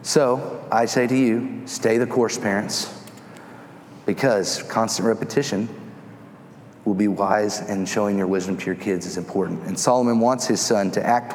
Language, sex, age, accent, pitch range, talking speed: English, male, 30-49, American, 135-190 Hz, 165 wpm